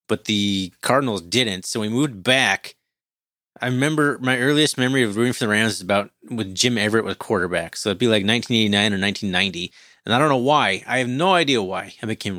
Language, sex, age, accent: English, male, 30-49, American